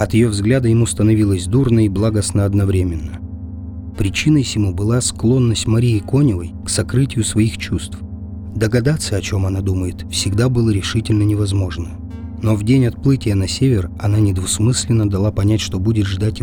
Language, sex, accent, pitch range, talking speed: Russian, male, native, 95-115 Hz, 150 wpm